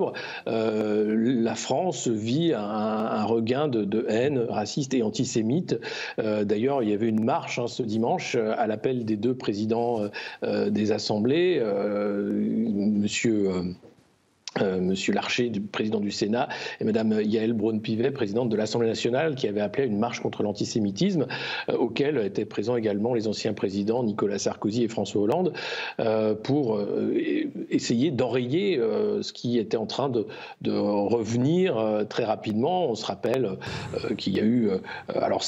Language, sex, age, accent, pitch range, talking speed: French, male, 50-69, French, 105-120 Hz, 145 wpm